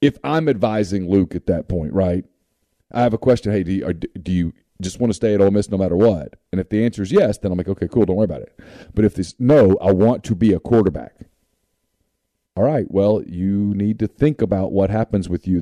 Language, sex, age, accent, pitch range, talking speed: English, male, 40-59, American, 90-115 Hz, 240 wpm